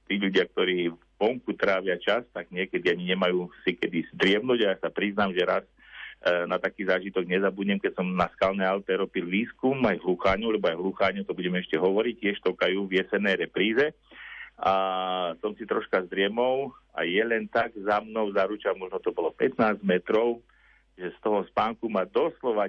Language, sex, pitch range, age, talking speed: Slovak, male, 95-130 Hz, 50-69, 175 wpm